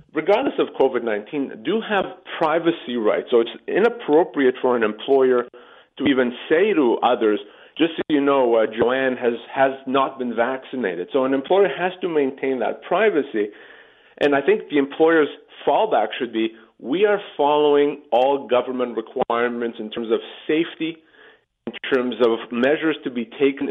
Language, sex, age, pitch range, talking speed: English, male, 40-59, 130-175 Hz, 155 wpm